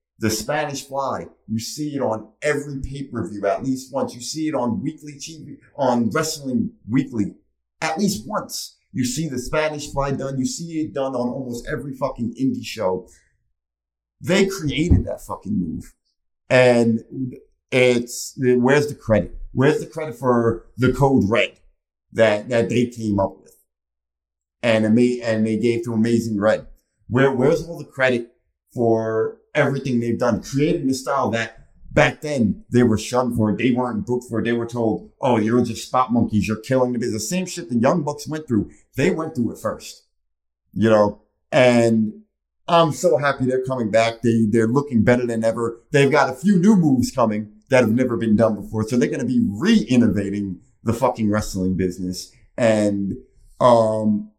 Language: English